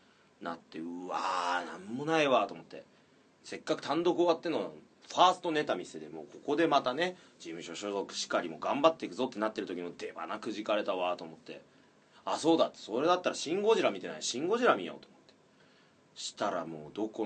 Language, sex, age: Japanese, male, 30-49